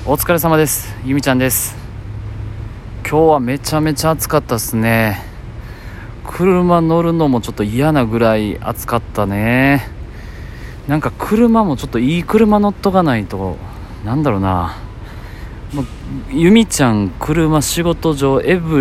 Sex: male